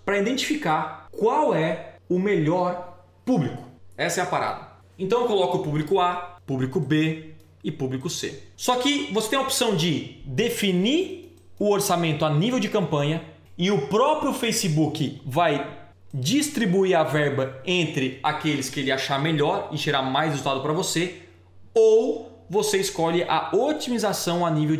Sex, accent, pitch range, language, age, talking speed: male, Brazilian, 145-195 Hz, Portuguese, 20-39, 150 wpm